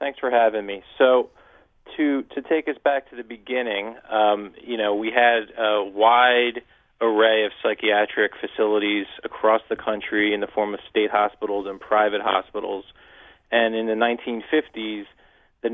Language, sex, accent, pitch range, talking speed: English, male, American, 105-125 Hz, 155 wpm